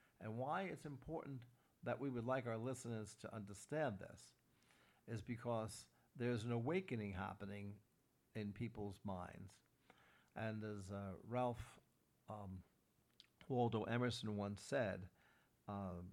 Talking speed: 120 wpm